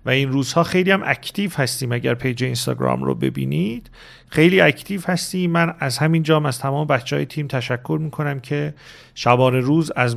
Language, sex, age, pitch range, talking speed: English, male, 40-59, 135-180 Hz, 170 wpm